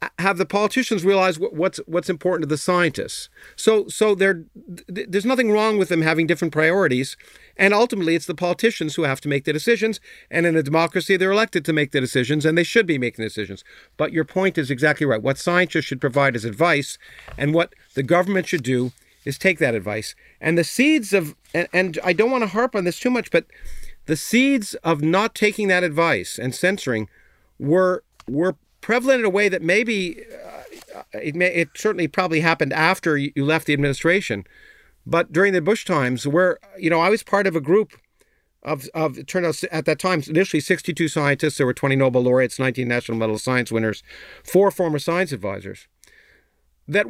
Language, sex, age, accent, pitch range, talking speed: English, male, 50-69, American, 145-195 Hz, 200 wpm